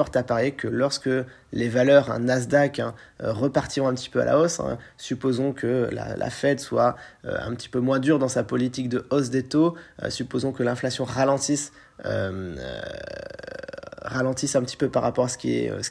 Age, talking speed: 30-49, 205 wpm